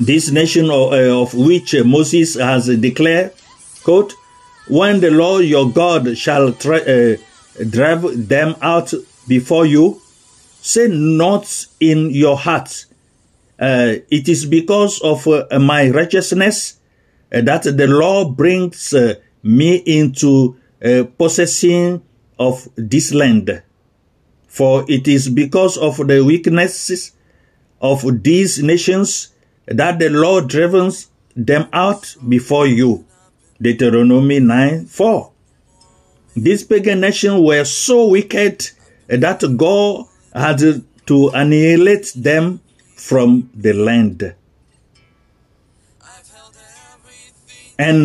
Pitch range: 125-175 Hz